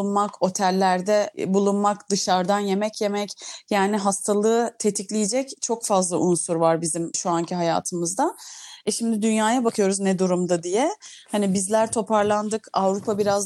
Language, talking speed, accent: Turkish, 125 wpm, native